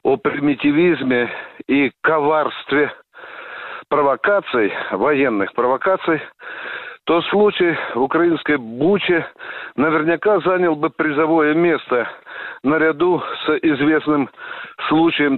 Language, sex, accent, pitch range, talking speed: Russian, male, native, 150-195 Hz, 80 wpm